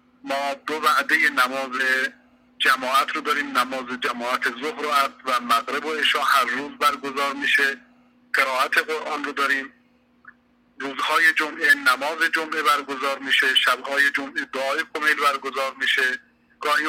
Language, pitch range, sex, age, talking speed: Persian, 135-180 Hz, male, 50-69, 130 wpm